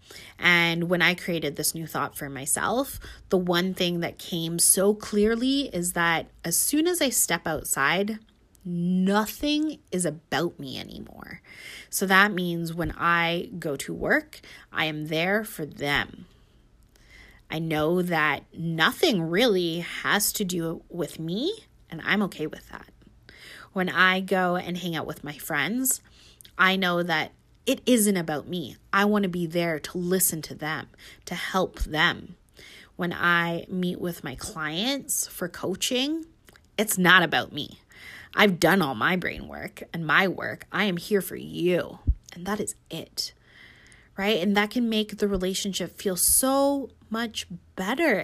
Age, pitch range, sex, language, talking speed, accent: 20-39, 170-210 Hz, female, English, 155 wpm, American